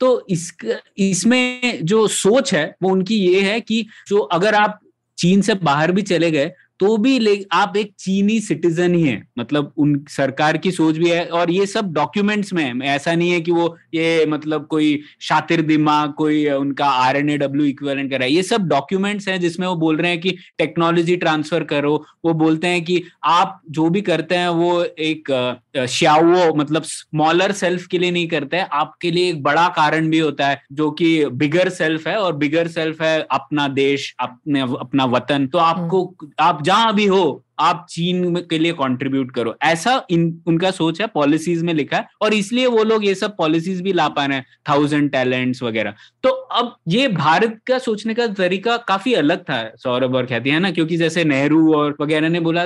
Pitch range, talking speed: 150-190 Hz, 155 wpm